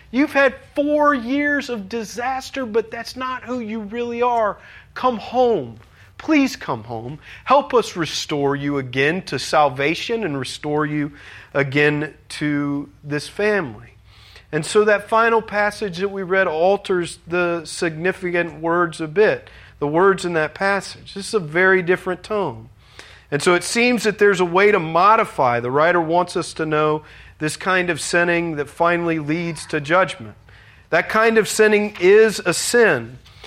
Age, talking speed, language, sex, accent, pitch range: 40-59, 160 wpm, English, male, American, 145-205 Hz